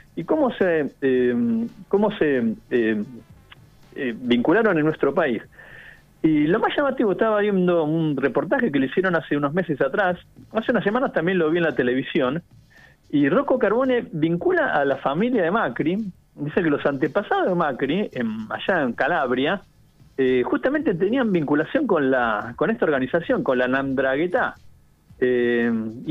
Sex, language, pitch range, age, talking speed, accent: male, Spanish, 125-200 Hz, 40-59, 155 wpm, Argentinian